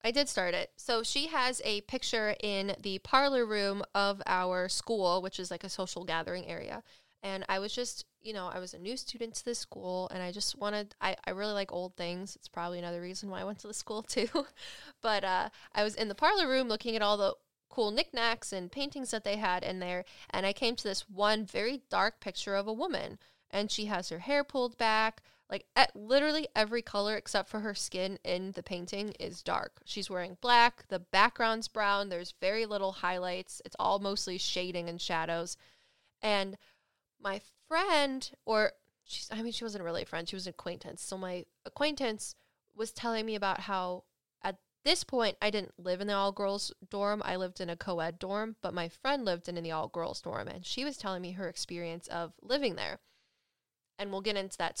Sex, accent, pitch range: female, American, 185-225 Hz